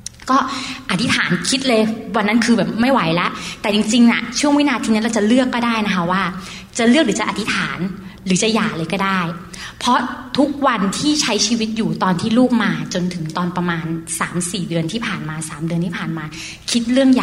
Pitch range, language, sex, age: 175-225 Hz, Thai, female, 30-49